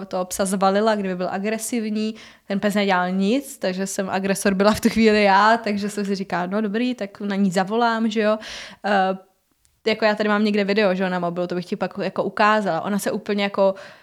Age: 20-39